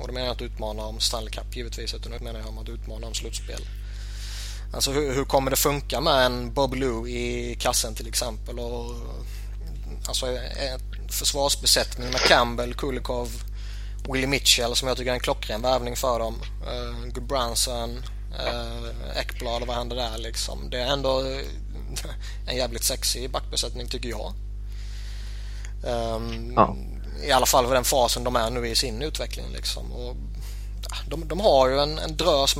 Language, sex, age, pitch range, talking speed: Swedish, male, 20-39, 105-130 Hz, 165 wpm